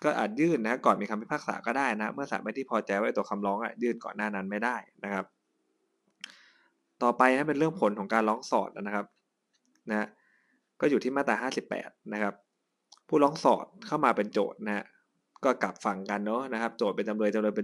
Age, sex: 20-39, male